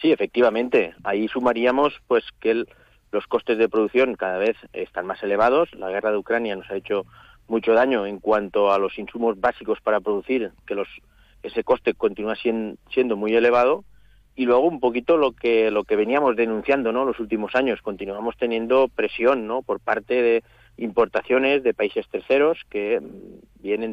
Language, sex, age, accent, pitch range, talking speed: Spanish, male, 40-59, Spanish, 110-130 Hz, 170 wpm